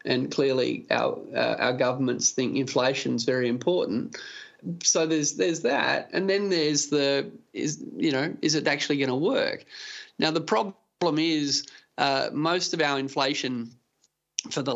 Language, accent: English, Australian